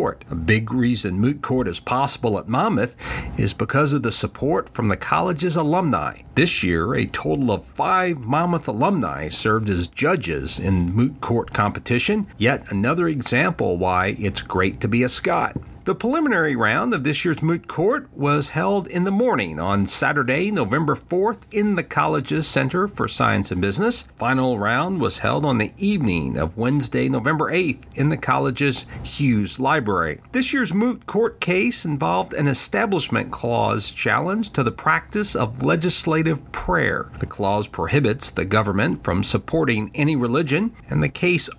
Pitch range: 110-165 Hz